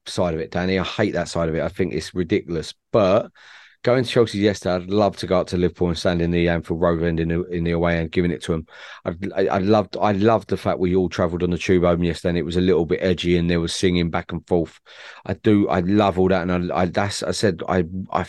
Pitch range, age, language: 85-100 Hz, 30-49, English